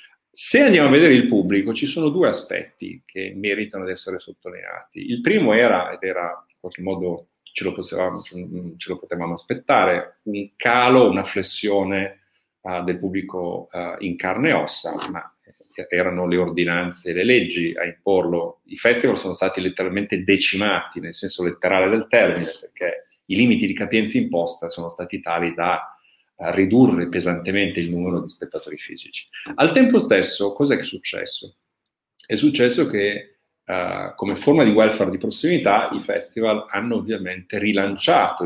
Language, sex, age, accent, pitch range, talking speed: Italian, male, 40-59, native, 90-120 Hz, 155 wpm